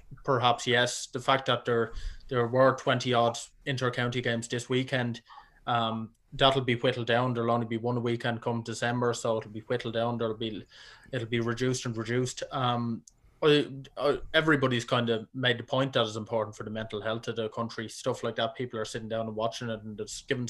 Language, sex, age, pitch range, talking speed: English, male, 20-39, 115-135 Hz, 210 wpm